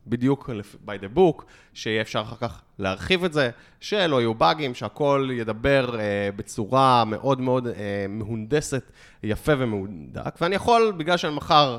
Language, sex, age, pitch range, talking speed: Hebrew, male, 20-39, 110-150 Hz, 135 wpm